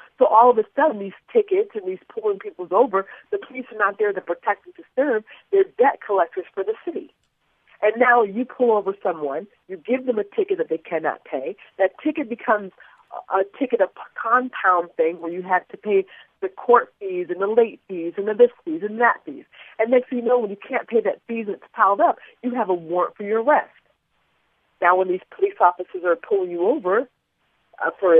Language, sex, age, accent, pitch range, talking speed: English, female, 40-59, American, 190-325 Hz, 215 wpm